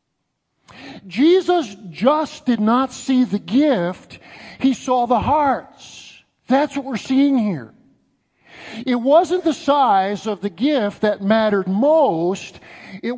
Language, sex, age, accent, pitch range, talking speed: English, male, 50-69, American, 180-260 Hz, 125 wpm